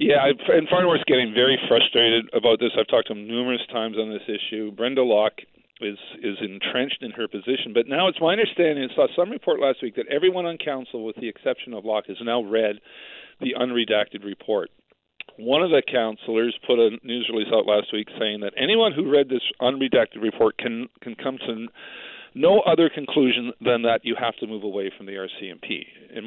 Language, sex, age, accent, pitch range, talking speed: English, male, 50-69, American, 110-135 Hz, 200 wpm